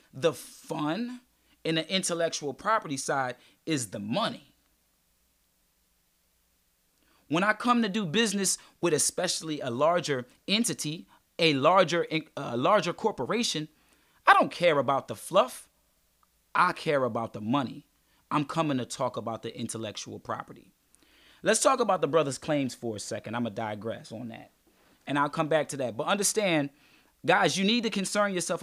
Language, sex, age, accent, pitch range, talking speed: English, male, 30-49, American, 140-190 Hz, 155 wpm